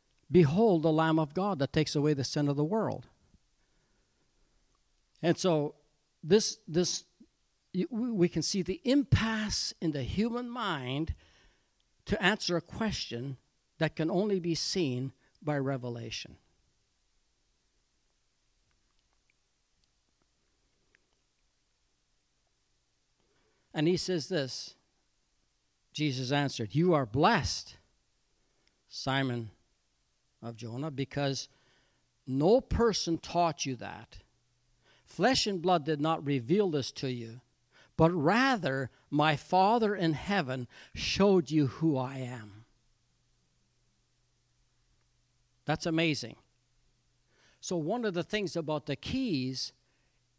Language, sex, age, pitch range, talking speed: English, male, 60-79, 125-180 Hz, 100 wpm